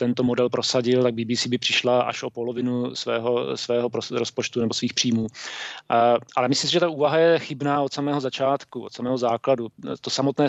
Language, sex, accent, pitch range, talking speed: Czech, male, native, 120-130 Hz, 185 wpm